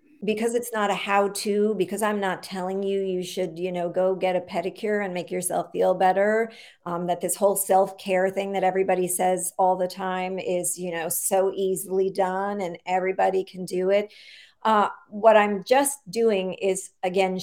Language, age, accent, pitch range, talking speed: English, 50-69, American, 180-210 Hz, 185 wpm